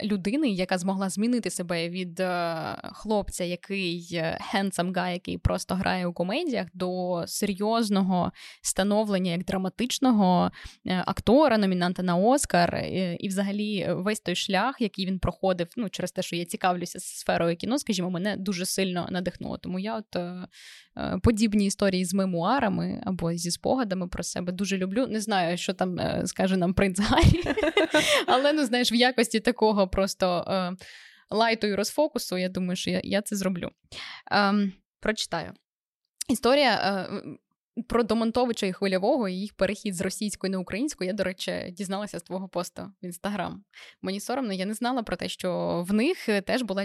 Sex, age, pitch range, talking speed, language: female, 20-39, 180-220 Hz, 155 wpm, Ukrainian